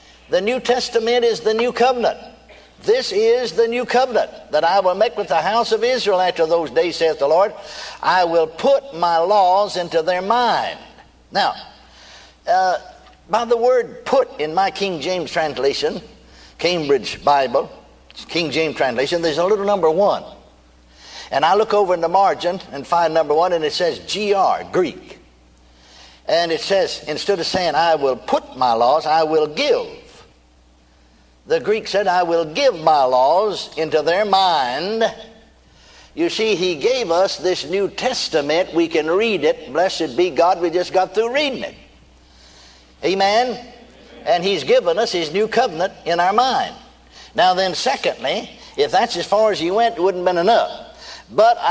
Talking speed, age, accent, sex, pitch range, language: 170 wpm, 60-79, American, male, 165-245 Hz, English